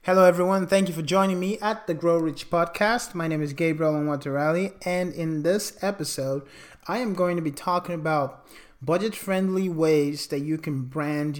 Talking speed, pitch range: 190 wpm, 155-185 Hz